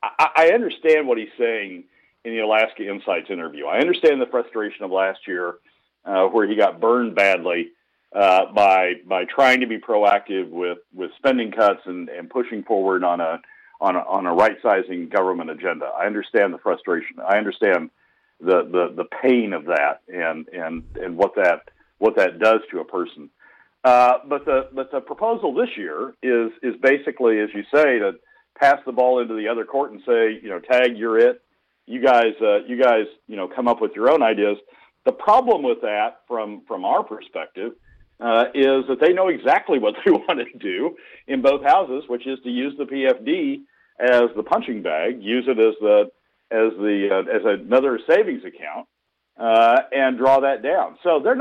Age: 50-69